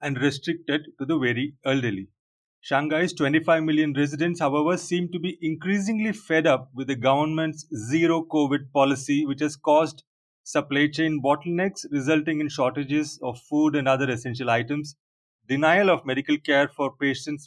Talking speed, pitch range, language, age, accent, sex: 150 wpm, 140-175 Hz, English, 30-49, Indian, male